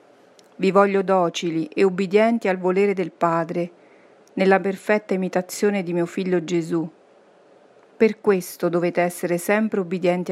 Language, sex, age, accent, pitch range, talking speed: Italian, female, 40-59, native, 175-205 Hz, 130 wpm